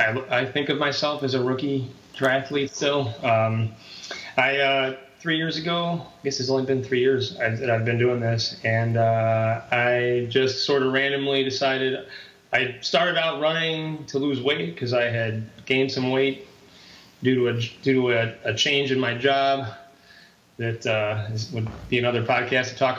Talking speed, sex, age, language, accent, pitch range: 180 wpm, male, 30-49, English, American, 120-140 Hz